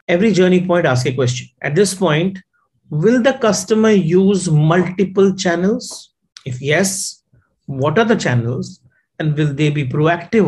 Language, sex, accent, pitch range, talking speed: English, male, Indian, 140-190 Hz, 150 wpm